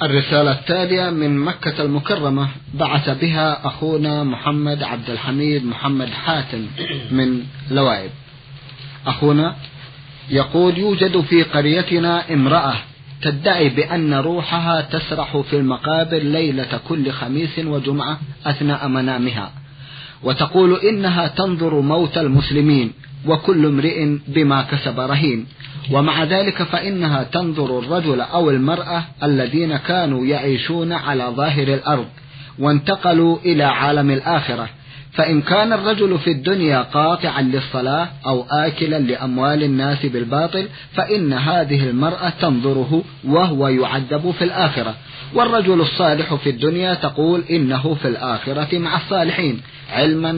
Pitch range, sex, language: 135-165 Hz, male, Arabic